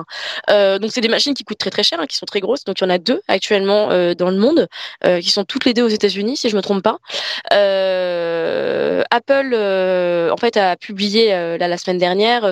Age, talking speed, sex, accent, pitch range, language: 20-39, 255 wpm, female, French, 180-220 Hz, French